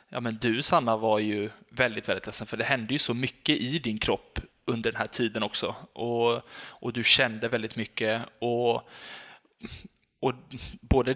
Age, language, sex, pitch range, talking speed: 20-39, Swedish, male, 115-125 Hz, 165 wpm